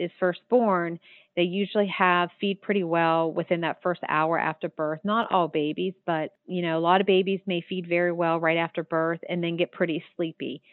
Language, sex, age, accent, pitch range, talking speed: English, female, 40-59, American, 160-185 Hz, 205 wpm